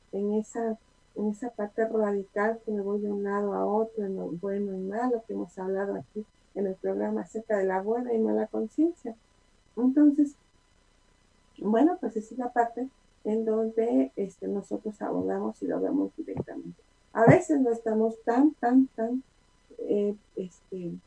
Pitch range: 190-230 Hz